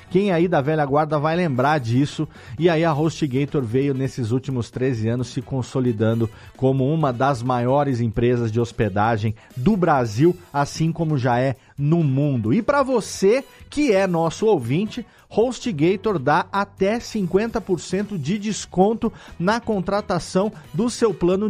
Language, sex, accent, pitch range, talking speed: Portuguese, male, Brazilian, 135-195 Hz, 145 wpm